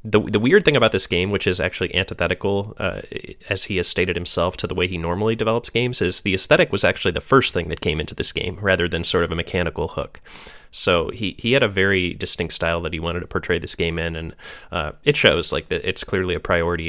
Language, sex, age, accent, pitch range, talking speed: English, male, 20-39, American, 85-100 Hz, 250 wpm